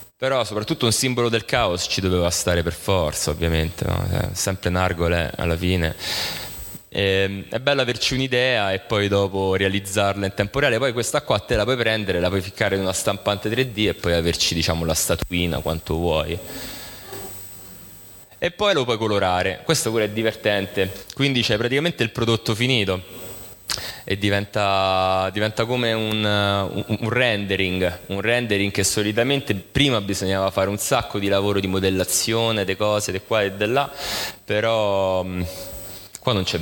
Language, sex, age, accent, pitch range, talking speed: Italian, male, 20-39, native, 90-110 Hz, 160 wpm